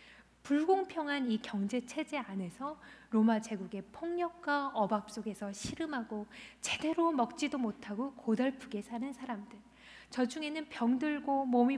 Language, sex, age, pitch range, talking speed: English, female, 20-39, 220-285 Hz, 105 wpm